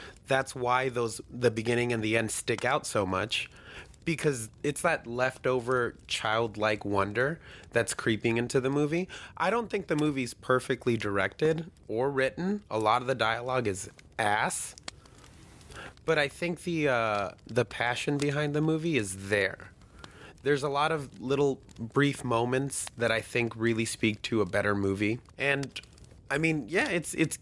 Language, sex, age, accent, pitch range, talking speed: English, male, 30-49, American, 110-140 Hz, 160 wpm